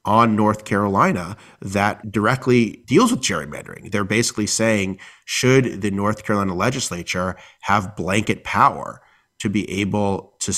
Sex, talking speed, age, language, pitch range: male, 130 wpm, 30-49, English, 85-105 Hz